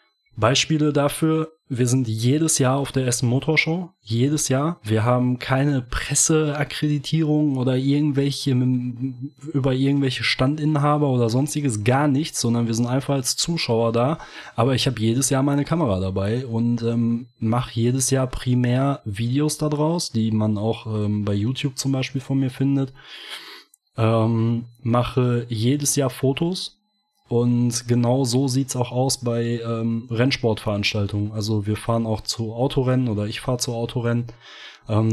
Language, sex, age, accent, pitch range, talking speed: German, male, 20-39, German, 115-135 Hz, 145 wpm